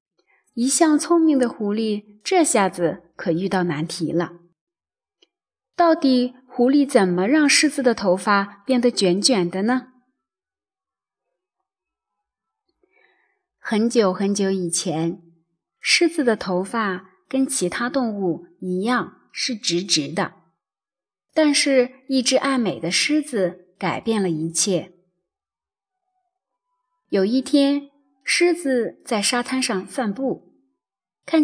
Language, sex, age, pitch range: Chinese, female, 30-49, 185-295 Hz